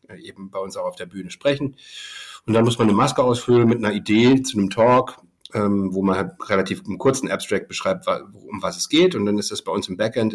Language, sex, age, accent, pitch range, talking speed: German, male, 50-69, German, 100-120 Hz, 230 wpm